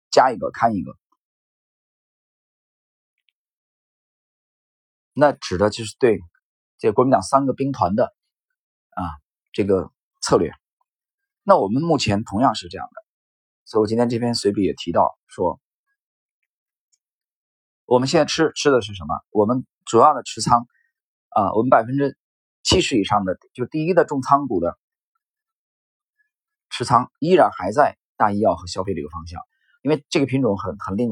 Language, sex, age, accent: Chinese, male, 30-49, native